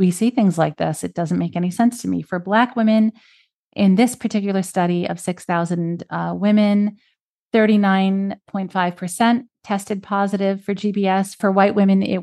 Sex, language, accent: female, English, American